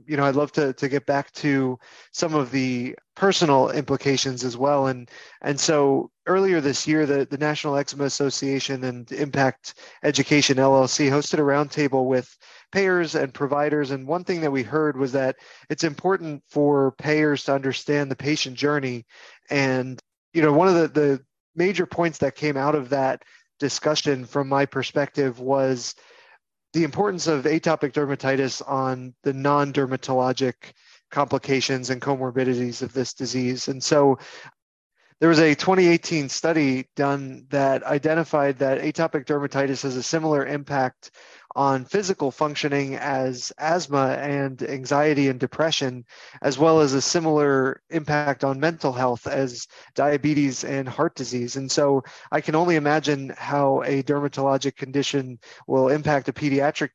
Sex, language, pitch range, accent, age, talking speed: male, English, 135-150 Hz, American, 20-39, 150 wpm